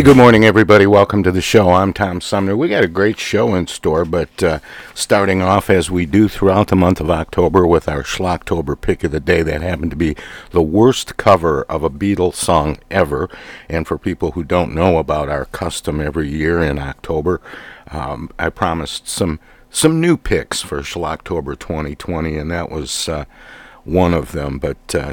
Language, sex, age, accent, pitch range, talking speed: English, male, 50-69, American, 80-95 Hz, 190 wpm